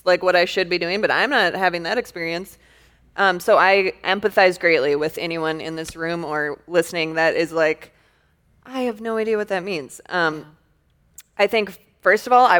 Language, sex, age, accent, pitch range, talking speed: English, female, 20-39, American, 160-195 Hz, 195 wpm